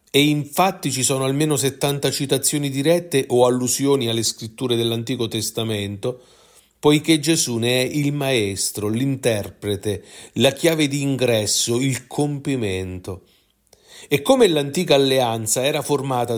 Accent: native